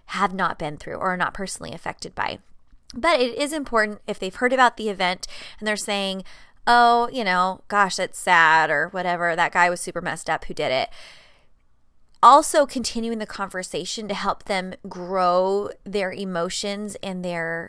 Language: English